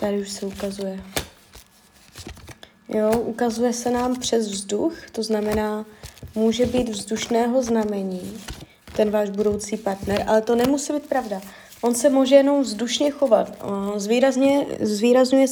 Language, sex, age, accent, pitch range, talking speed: Czech, female, 20-39, native, 210-245 Hz, 125 wpm